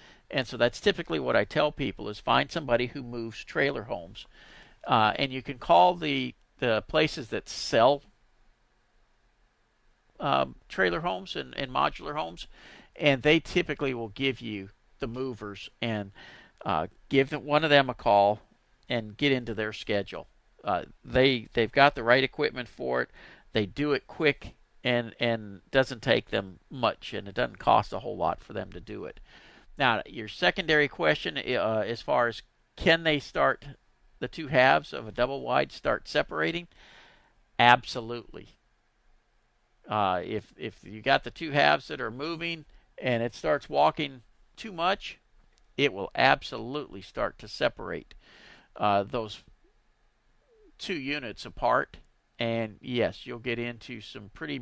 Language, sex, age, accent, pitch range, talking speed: English, male, 50-69, American, 110-145 Hz, 155 wpm